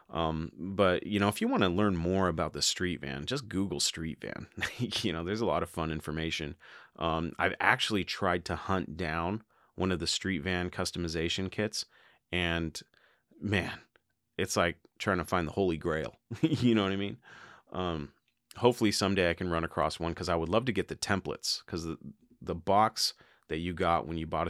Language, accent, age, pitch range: English, American, 30-49, 80-90 Hz